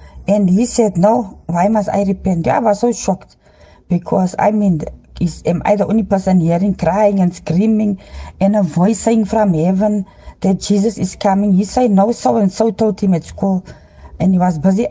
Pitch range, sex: 180-230 Hz, female